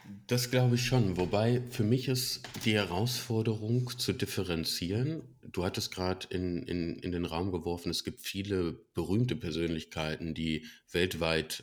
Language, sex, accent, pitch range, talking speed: German, male, German, 85-115 Hz, 140 wpm